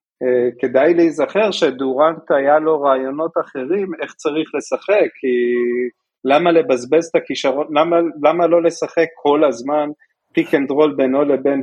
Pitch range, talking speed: 130-170 Hz, 140 wpm